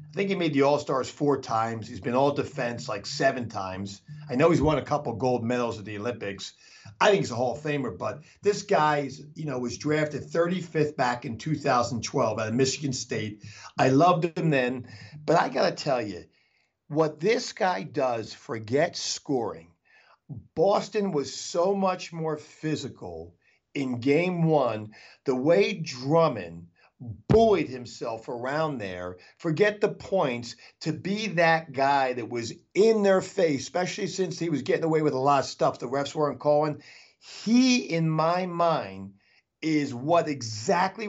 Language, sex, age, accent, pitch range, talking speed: English, male, 50-69, American, 125-165 Hz, 165 wpm